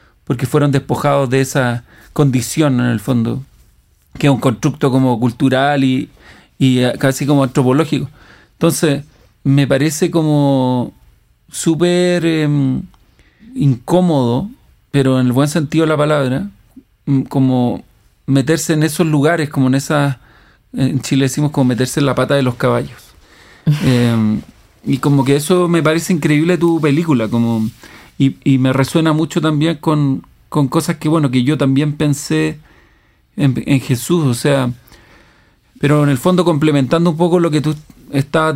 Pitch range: 130-160 Hz